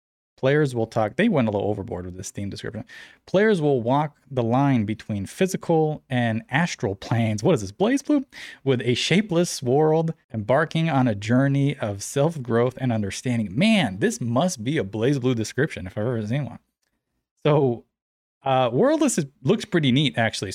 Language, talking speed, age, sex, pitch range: English, 175 wpm, 20-39, male, 115-155 Hz